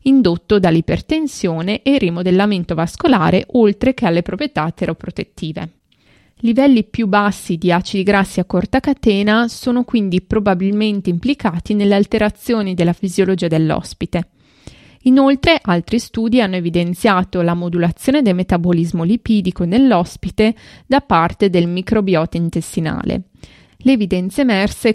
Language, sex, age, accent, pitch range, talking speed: Italian, female, 20-39, native, 175-225 Hz, 115 wpm